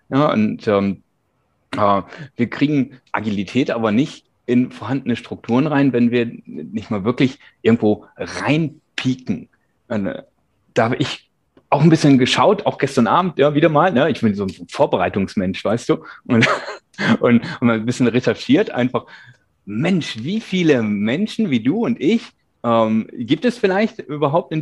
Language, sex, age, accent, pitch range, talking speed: German, male, 30-49, German, 120-170 Hz, 155 wpm